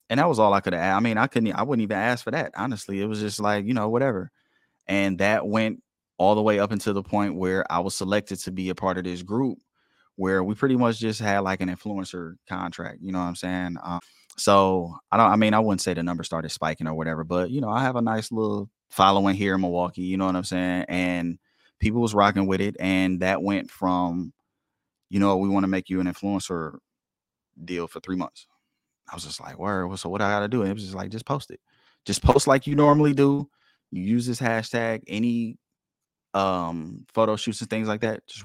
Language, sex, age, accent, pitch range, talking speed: English, male, 20-39, American, 90-110 Hz, 240 wpm